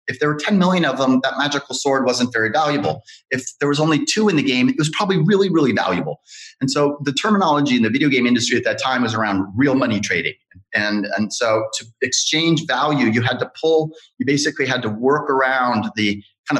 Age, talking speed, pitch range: 30-49, 225 wpm, 110-145 Hz